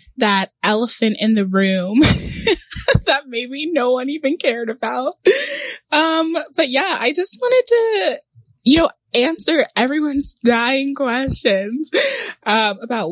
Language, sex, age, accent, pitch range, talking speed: English, female, 20-39, American, 195-270 Hz, 125 wpm